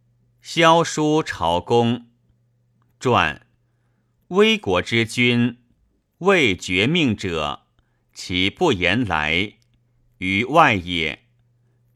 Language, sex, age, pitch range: Chinese, male, 50-69, 110-125 Hz